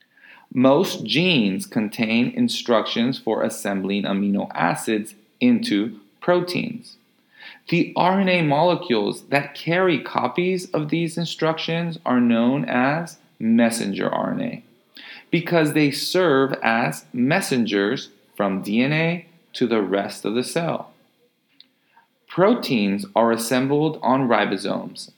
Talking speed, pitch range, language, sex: 100 wpm, 110-175 Hz, English, male